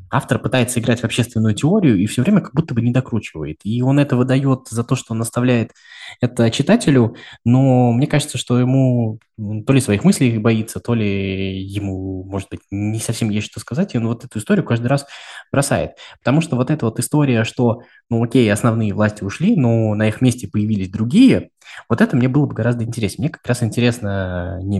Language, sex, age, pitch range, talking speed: Russian, male, 20-39, 100-125 Hz, 200 wpm